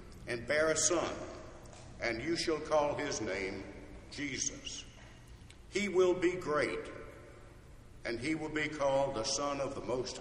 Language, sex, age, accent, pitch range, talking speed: English, male, 60-79, American, 125-165 Hz, 145 wpm